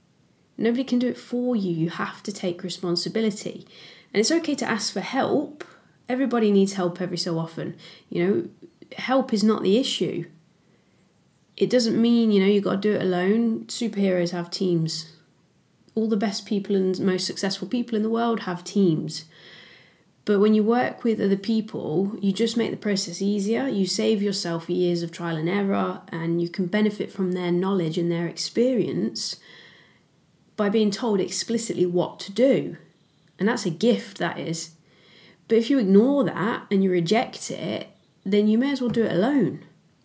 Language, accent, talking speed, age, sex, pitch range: English, British, 180 wpm, 20-39, female, 175-225 Hz